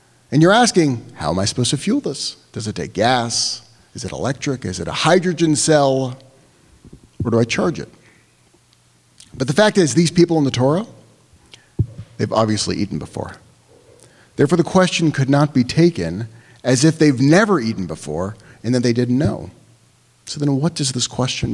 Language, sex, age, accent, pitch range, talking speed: English, male, 40-59, American, 120-175 Hz, 180 wpm